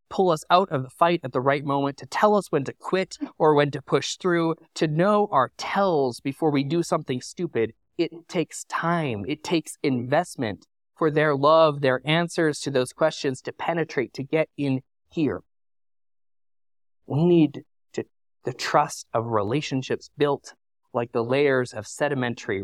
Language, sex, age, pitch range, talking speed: English, male, 20-39, 120-160 Hz, 165 wpm